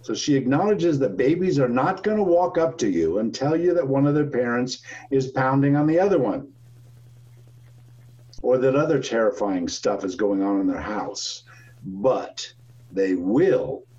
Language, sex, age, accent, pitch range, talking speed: English, male, 60-79, American, 120-135 Hz, 170 wpm